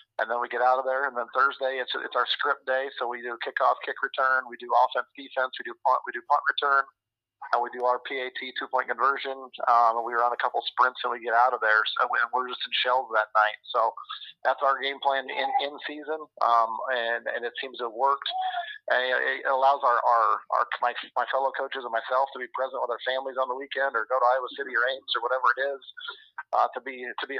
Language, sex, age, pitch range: English, male, 40-59, 120-135 Hz